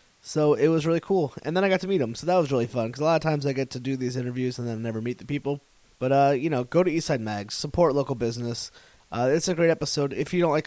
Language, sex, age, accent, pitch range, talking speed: English, male, 20-39, American, 120-140 Hz, 305 wpm